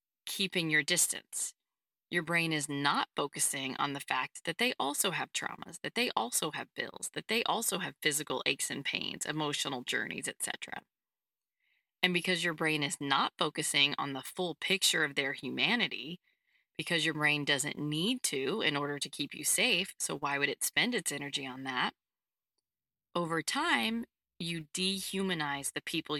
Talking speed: 165 wpm